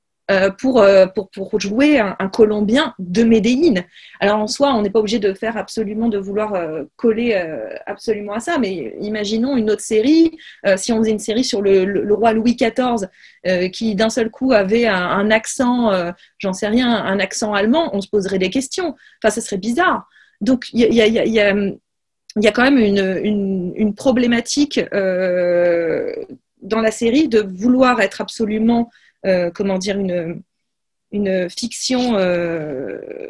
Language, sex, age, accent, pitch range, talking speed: French, female, 30-49, French, 200-250 Hz, 190 wpm